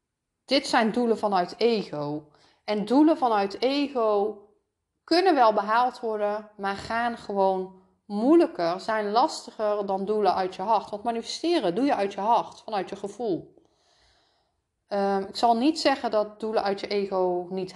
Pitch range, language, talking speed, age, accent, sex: 180-230 Hz, Dutch, 150 wpm, 30-49, Dutch, female